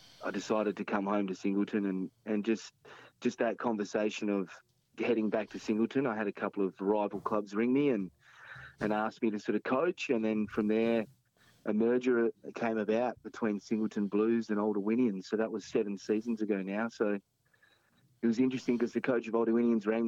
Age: 30-49